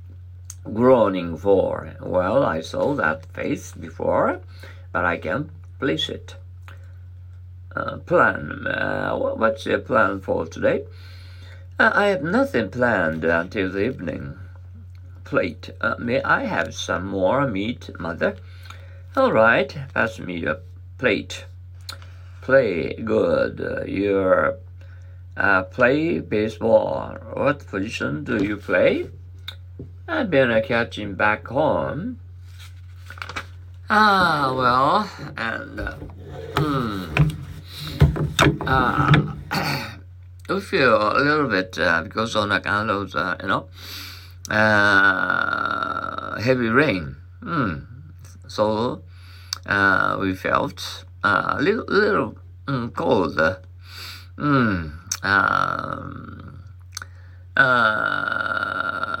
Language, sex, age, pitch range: Japanese, male, 50-69, 90-105 Hz